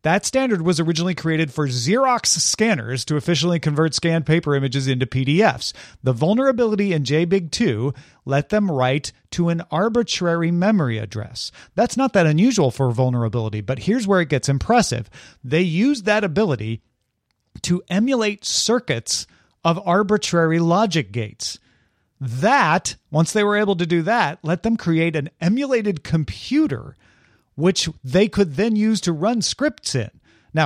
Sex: male